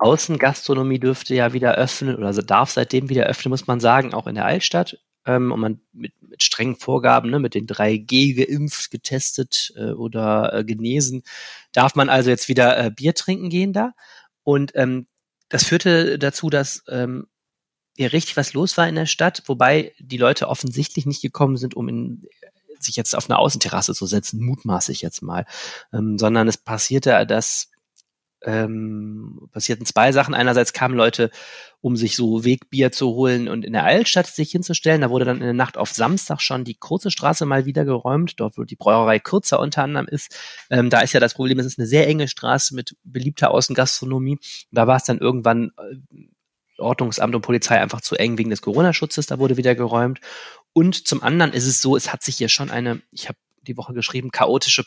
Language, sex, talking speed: German, male, 195 wpm